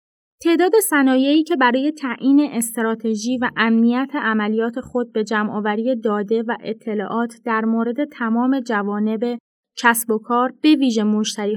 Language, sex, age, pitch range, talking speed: Persian, female, 20-39, 220-260 Hz, 130 wpm